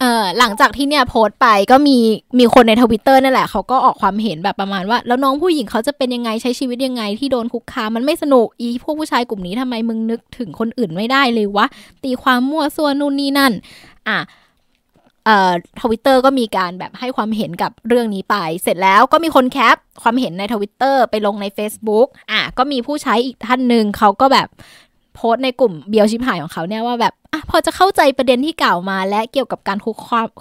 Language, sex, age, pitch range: Thai, female, 20-39, 215-260 Hz